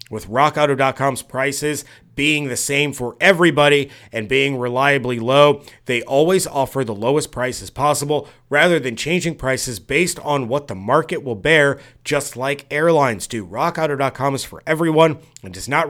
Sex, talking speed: male, 155 wpm